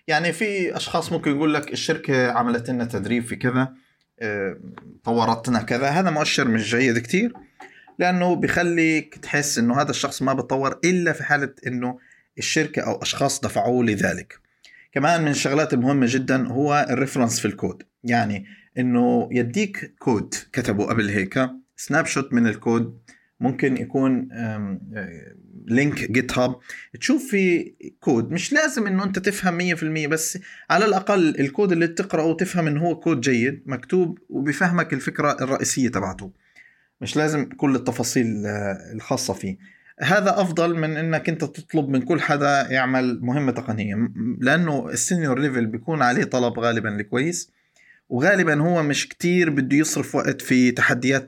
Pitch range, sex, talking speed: 125-165 Hz, male, 145 wpm